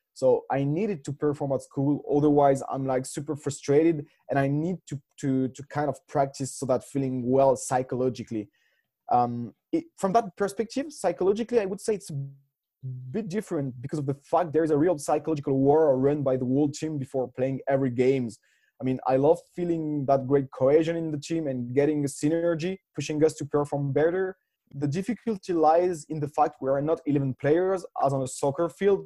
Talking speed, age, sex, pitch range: 190 wpm, 20-39, male, 135-170 Hz